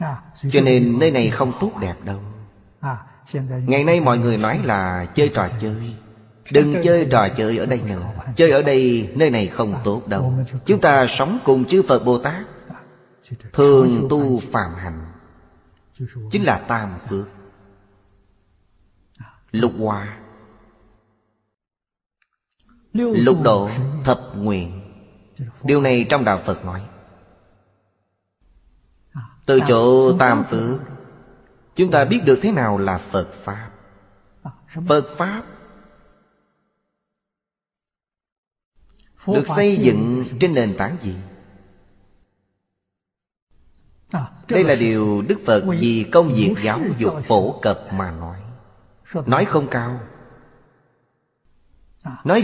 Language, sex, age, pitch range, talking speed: Vietnamese, male, 30-49, 100-135 Hz, 115 wpm